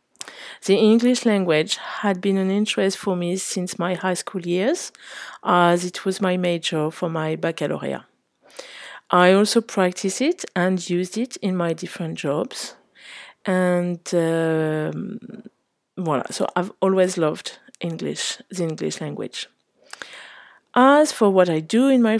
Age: 50-69